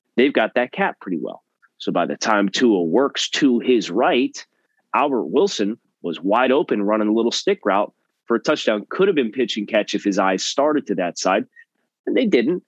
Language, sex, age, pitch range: English, male, 30-49, 100-115 Hz